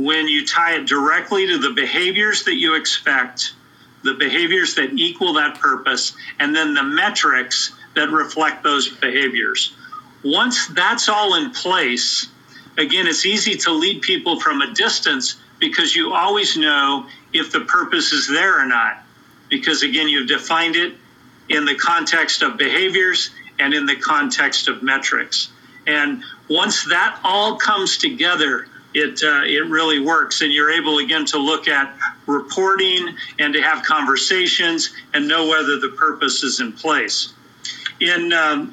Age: 50-69